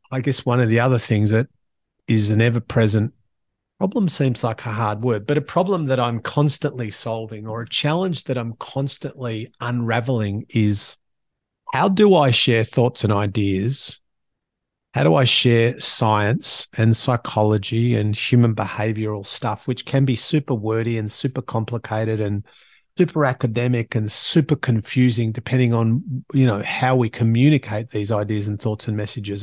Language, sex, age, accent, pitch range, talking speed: English, male, 40-59, Australian, 110-135 Hz, 155 wpm